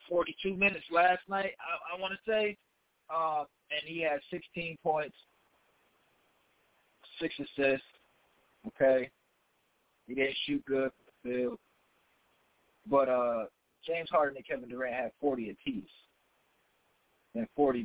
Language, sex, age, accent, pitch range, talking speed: English, male, 50-69, American, 130-165 Hz, 125 wpm